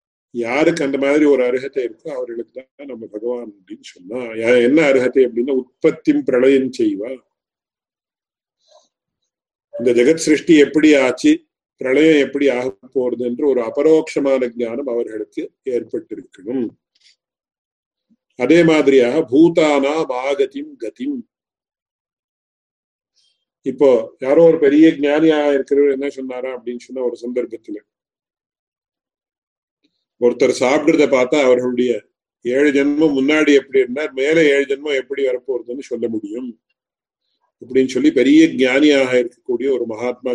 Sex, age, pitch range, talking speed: male, 50-69, 130-165 Hz, 75 wpm